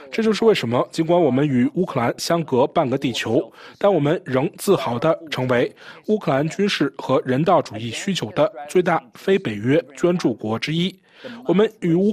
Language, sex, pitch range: Chinese, male, 130-180 Hz